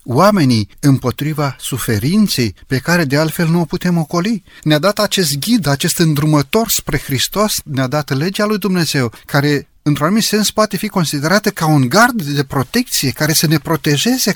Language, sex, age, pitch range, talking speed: Romanian, male, 30-49, 115-170 Hz, 165 wpm